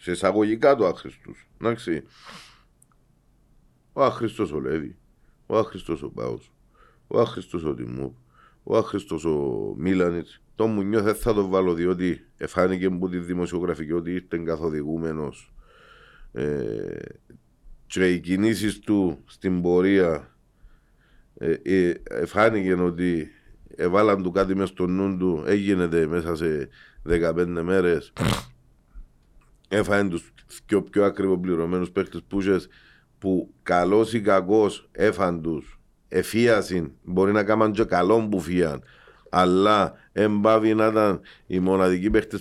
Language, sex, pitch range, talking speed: Greek, male, 90-110 Hz, 120 wpm